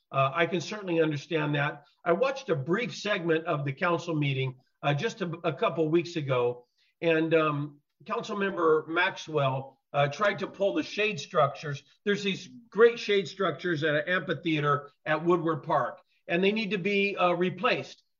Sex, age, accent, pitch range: male, 50-69, American, 160-200 Hz